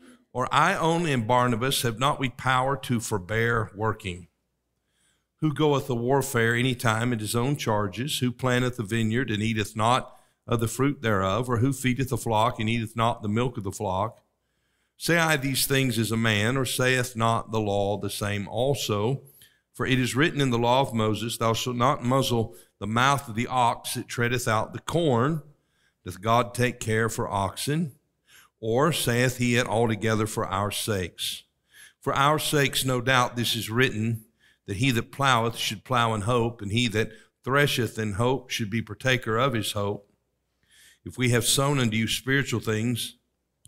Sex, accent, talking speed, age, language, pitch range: male, American, 185 wpm, 50-69, English, 110-130 Hz